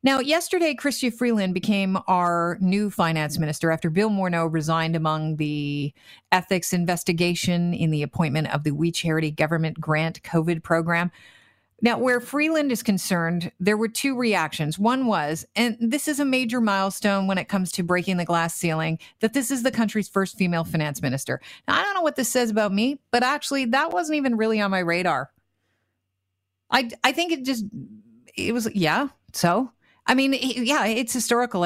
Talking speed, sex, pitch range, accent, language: 180 wpm, female, 165-235 Hz, American, English